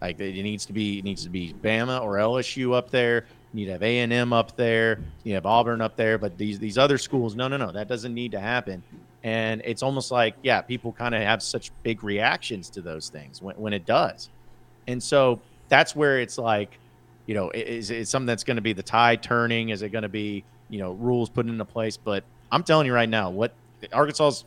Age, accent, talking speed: 30-49, American, 240 wpm